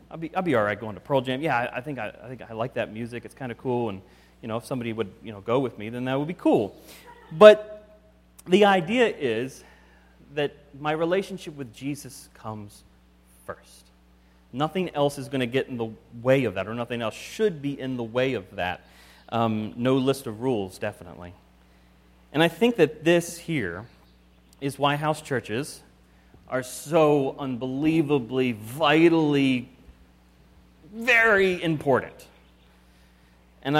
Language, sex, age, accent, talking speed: English, male, 30-49, American, 170 wpm